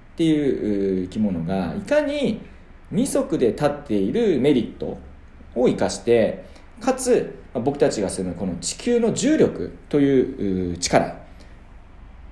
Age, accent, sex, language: 40-59, native, male, Japanese